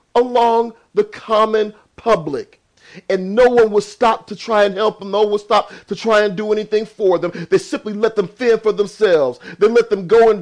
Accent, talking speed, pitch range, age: American, 215 wpm, 200-255 Hz, 40-59